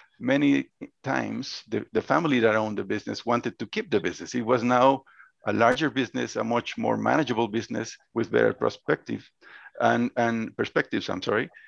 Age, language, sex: 50-69, English, male